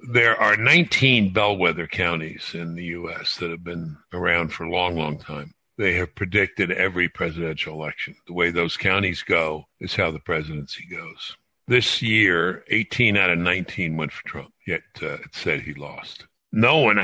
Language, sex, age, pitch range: English, female, 60-79, 80-105 Hz